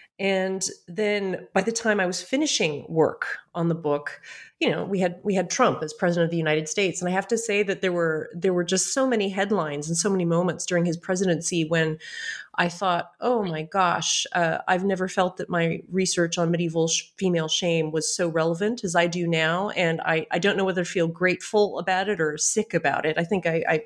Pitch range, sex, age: 165-205 Hz, female, 30-49